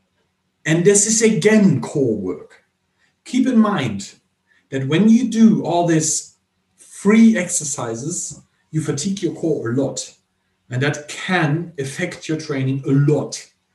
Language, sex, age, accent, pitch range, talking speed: English, male, 40-59, German, 130-170 Hz, 135 wpm